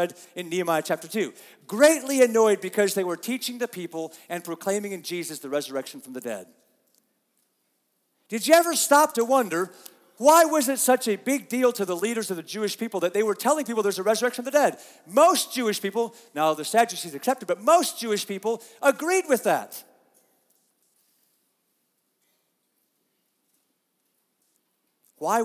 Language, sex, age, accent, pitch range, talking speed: English, male, 40-59, American, 145-230 Hz, 160 wpm